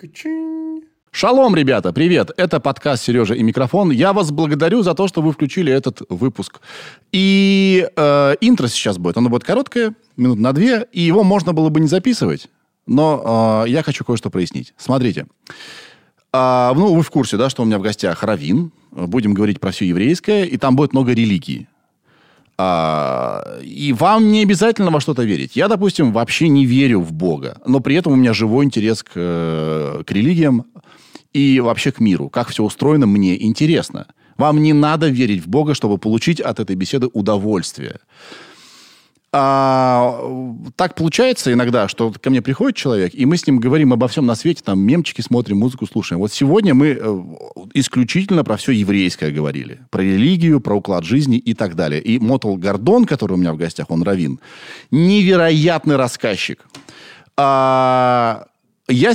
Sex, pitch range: male, 110-165 Hz